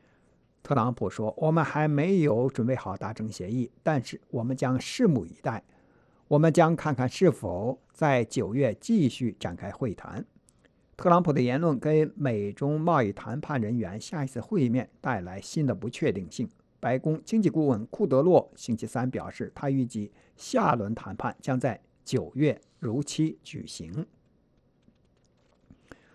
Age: 60-79